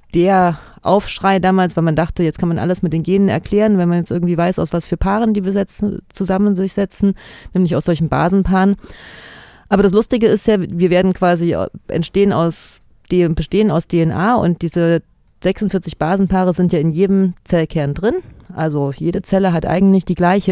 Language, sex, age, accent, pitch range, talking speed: German, female, 30-49, German, 165-195 Hz, 180 wpm